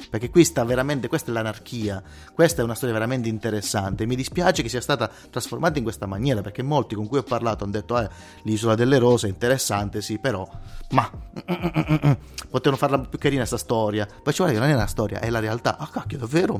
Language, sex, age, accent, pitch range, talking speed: Italian, male, 30-49, native, 105-140 Hz, 220 wpm